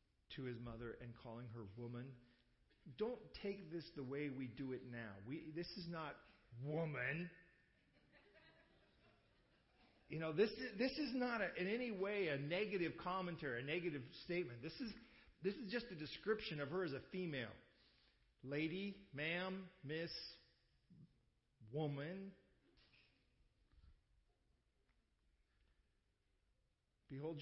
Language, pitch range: English, 115-170 Hz